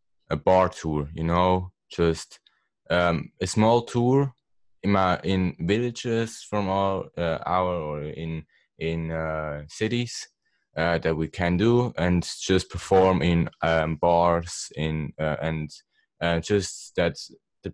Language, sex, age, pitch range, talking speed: English, male, 20-39, 80-95 Hz, 140 wpm